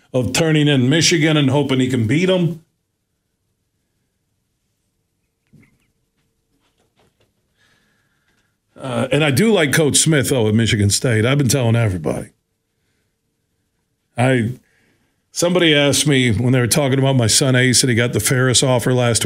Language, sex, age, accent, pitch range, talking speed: English, male, 50-69, American, 120-145 Hz, 135 wpm